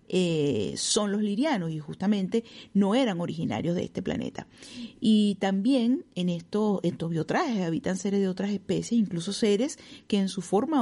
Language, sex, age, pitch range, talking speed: Spanish, female, 40-59, 200-255 Hz, 160 wpm